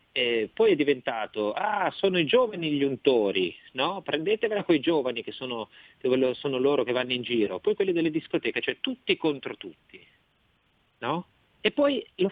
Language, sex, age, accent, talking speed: Italian, male, 40-59, native, 160 wpm